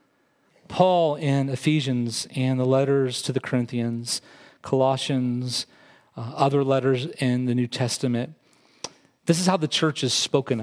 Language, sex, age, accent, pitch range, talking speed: English, male, 40-59, American, 140-200 Hz, 135 wpm